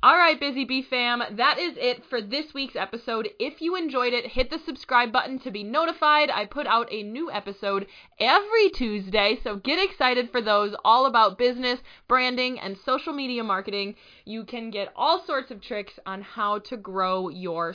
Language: English